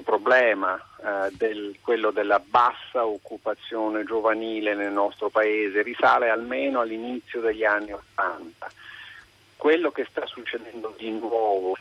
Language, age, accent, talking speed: Italian, 50-69, native, 115 wpm